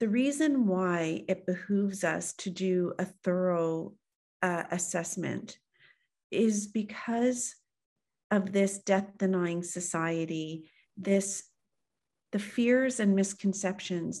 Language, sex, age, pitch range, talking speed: English, female, 40-59, 175-200 Hz, 95 wpm